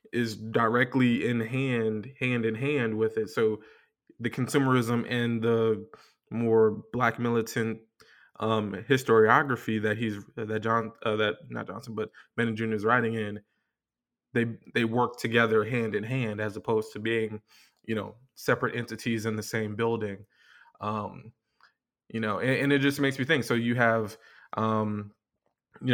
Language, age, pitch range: English, 20-39, 110-125 Hz